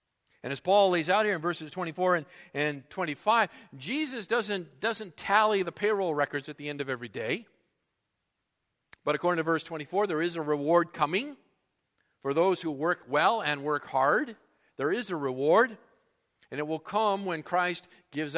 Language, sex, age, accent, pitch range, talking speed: English, male, 50-69, American, 150-205 Hz, 175 wpm